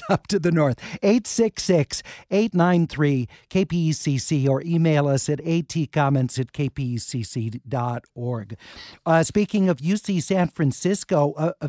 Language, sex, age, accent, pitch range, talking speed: English, male, 50-69, American, 140-180 Hz, 105 wpm